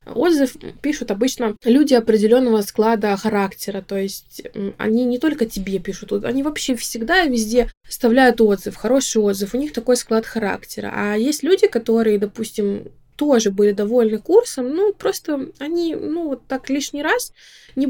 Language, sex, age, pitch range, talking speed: Russian, female, 20-39, 210-275 Hz, 155 wpm